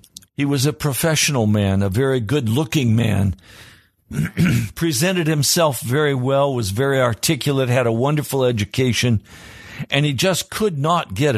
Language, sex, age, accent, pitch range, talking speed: English, male, 50-69, American, 100-145 Hz, 135 wpm